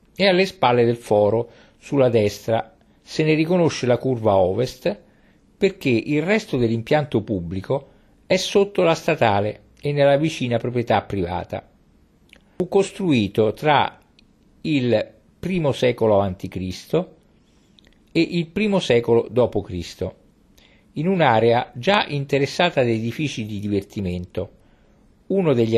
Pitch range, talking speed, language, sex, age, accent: 105-160 Hz, 115 wpm, Italian, male, 50-69, native